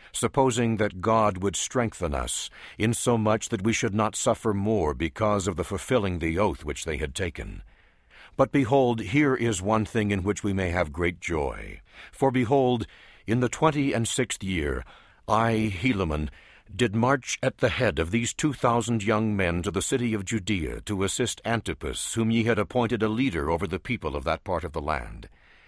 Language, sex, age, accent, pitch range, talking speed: English, male, 60-79, American, 85-115 Hz, 185 wpm